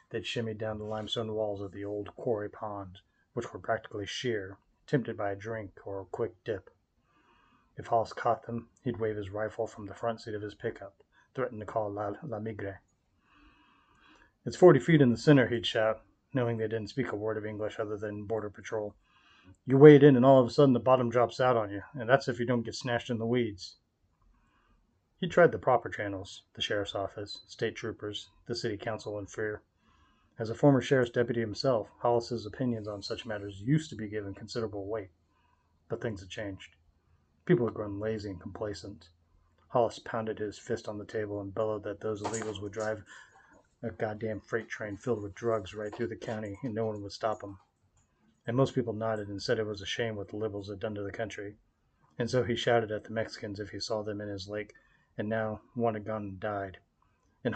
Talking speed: 210 wpm